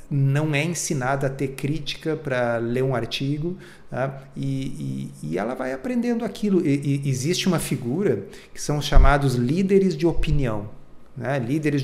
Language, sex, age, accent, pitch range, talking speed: Portuguese, male, 40-59, Brazilian, 130-160 Hz, 135 wpm